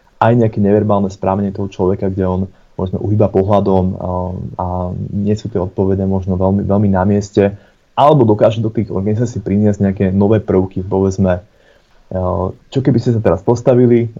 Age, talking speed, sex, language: 20-39, 155 wpm, male, Slovak